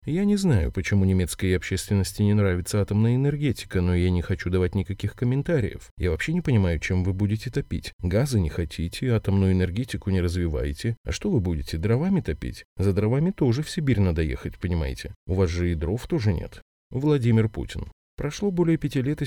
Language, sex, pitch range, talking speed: Russian, male, 90-120 Hz, 185 wpm